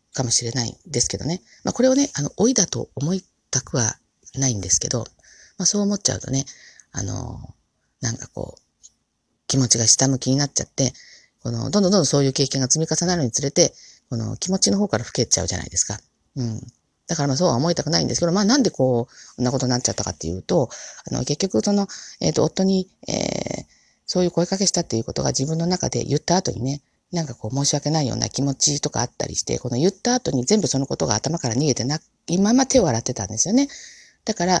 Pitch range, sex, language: 120-175 Hz, female, Japanese